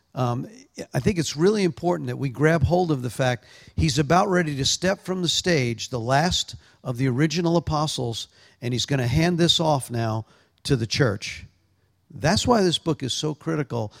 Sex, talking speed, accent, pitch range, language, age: male, 195 wpm, American, 125-170 Hz, English, 50-69